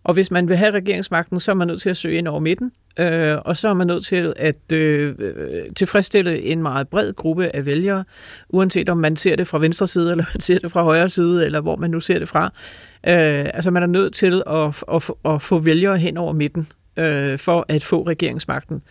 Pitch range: 160-190 Hz